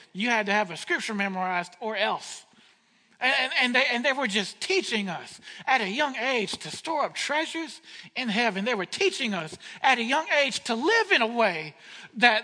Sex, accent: male, American